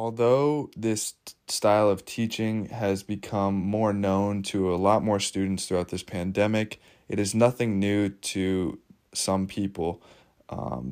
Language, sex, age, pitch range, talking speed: English, male, 20-39, 95-110 Hz, 135 wpm